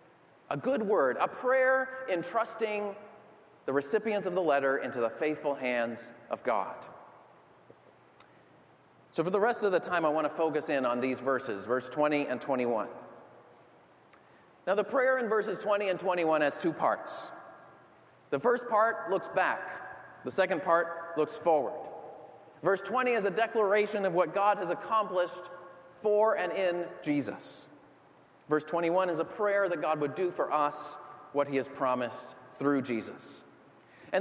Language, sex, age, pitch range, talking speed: English, male, 30-49, 145-210 Hz, 155 wpm